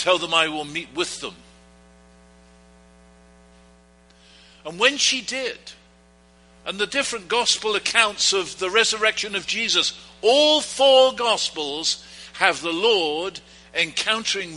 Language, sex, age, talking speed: English, male, 60-79, 115 wpm